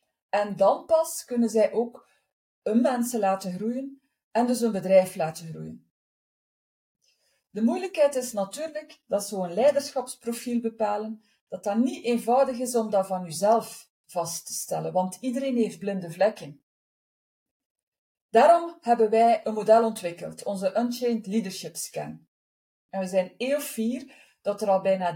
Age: 40-59